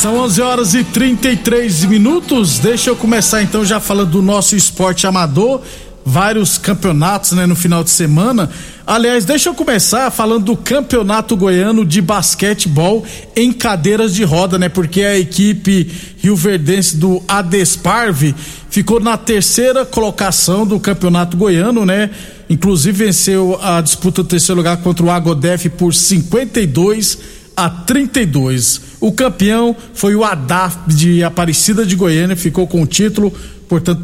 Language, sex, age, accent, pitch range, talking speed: Portuguese, male, 50-69, Brazilian, 175-220 Hz, 145 wpm